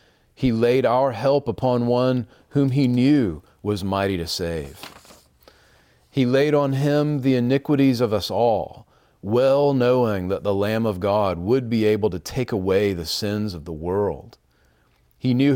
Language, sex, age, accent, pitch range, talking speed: English, male, 40-59, American, 105-135 Hz, 160 wpm